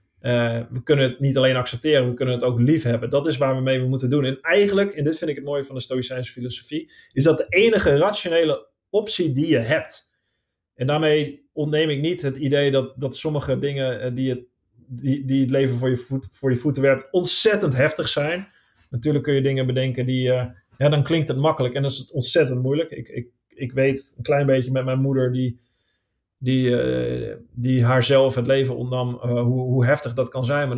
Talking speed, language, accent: 210 wpm, Dutch, Dutch